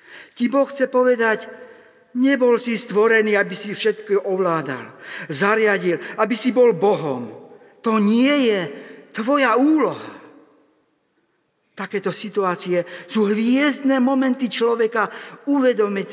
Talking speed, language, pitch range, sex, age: 100 wpm, Slovak, 175-255 Hz, male, 50-69